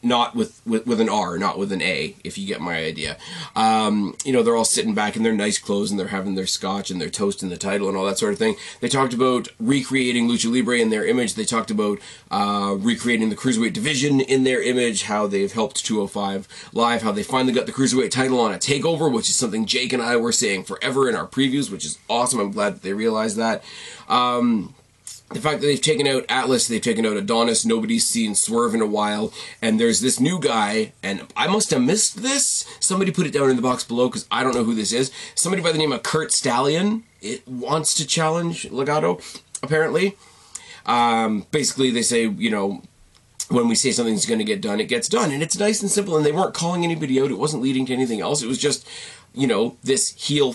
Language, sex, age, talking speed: English, male, 20-39, 235 wpm